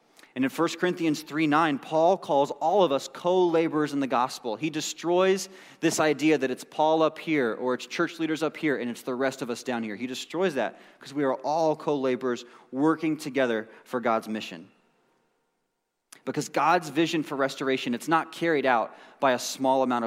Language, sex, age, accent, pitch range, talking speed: English, male, 30-49, American, 125-165 Hz, 190 wpm